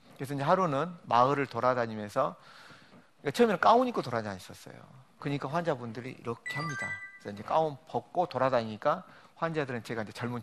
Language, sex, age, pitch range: Korean, male, 40-59, 115-155 Hz